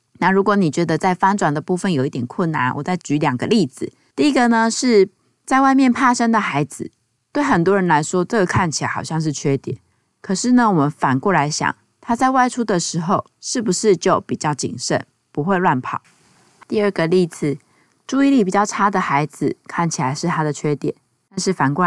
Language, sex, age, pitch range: Chinese, female, 20-39, 150-205 Hz